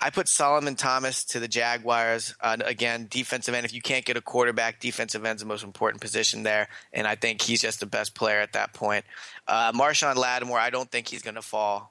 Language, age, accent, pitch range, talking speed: English, 20-39, American, 110-125 Hz, 230 wpm